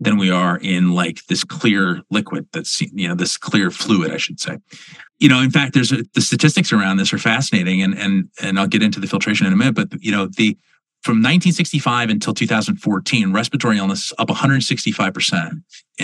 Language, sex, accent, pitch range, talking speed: English, male, American, 100-120 Hz, 200 wpm